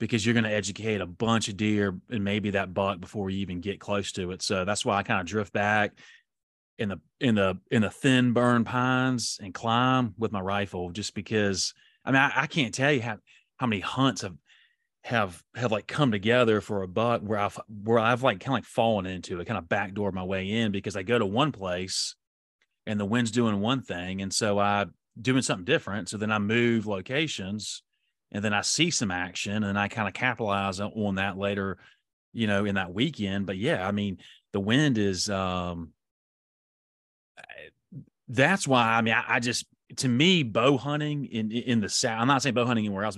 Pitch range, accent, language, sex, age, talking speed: 100-120 Hz, American, English, male, 30-49, 215 wpm